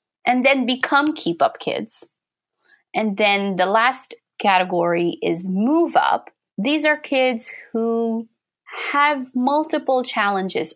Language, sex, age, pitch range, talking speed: English, female, 20-39, 180-245 Hz, 115 wpm